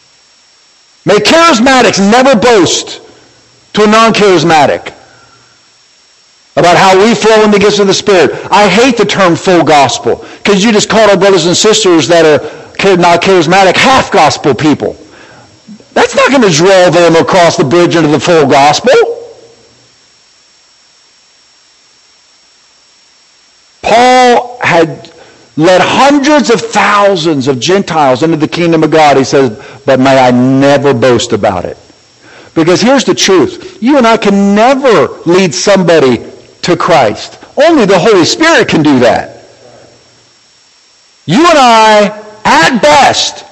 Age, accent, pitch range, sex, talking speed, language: 50-69, American, 180-280 Hz, male, 135 wpm, English